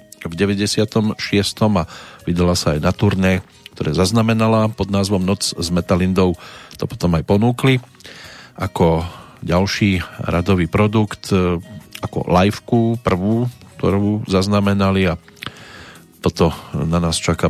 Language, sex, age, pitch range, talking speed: Slovak, male, 40-59, 90-110 Hz, 115 wpm